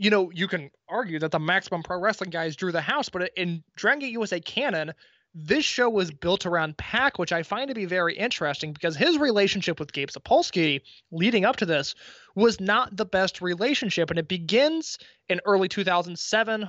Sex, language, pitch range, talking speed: male, English, 165-205 Hz, 195 wpm